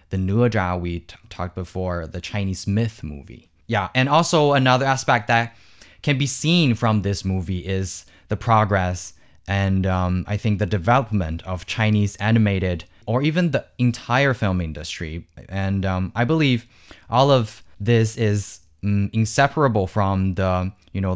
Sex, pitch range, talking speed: male, 95-120 Hz, 155 wpm